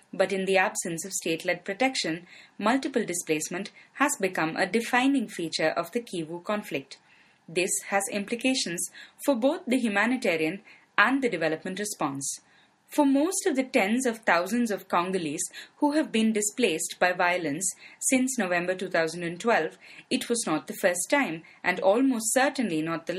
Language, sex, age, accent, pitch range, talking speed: English, female, 20-39, Indian, 175-240 Hz, 150 wpm